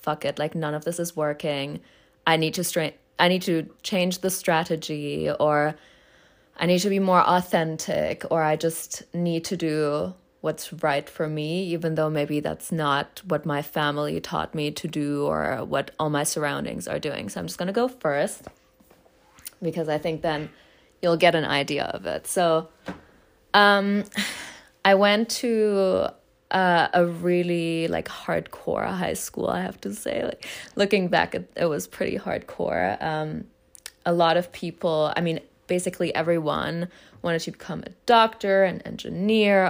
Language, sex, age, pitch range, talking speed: English, female, 20-39, 155-190 Hz, 165 wpm